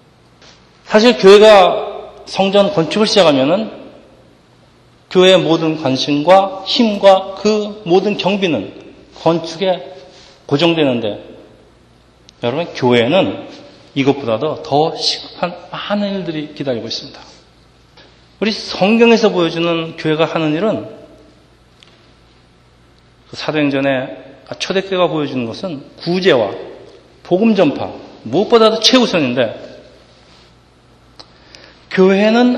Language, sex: Korean, male